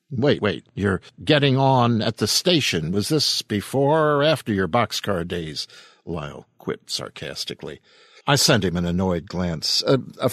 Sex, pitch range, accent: male, 95-150 Hz, American